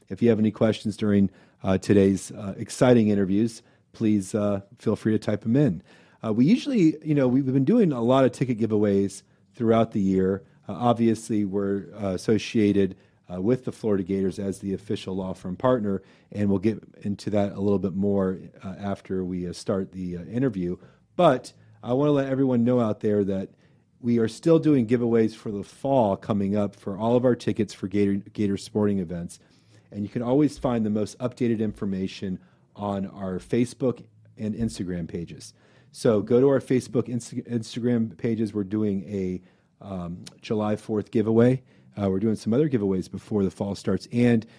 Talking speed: 185 wpm